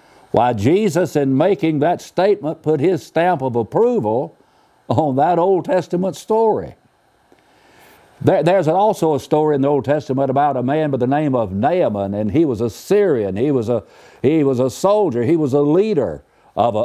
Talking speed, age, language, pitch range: 165 wpm, 60-79, English, 130-175 Hz